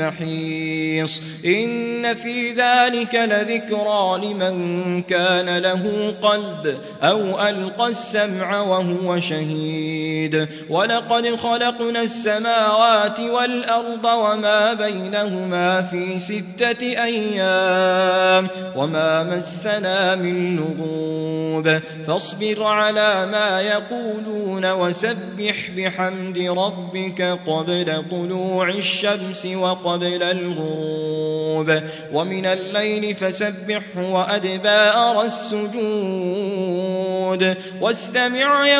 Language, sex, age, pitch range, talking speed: Arabic, male, 20-39, 185-245 Hz, 60 wpm